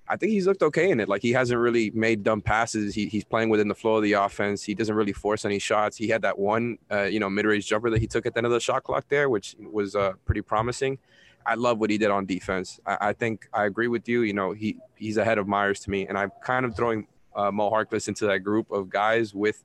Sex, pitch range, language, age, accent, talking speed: male, 105-115 Hz, English, 20-39, American, 280 wpm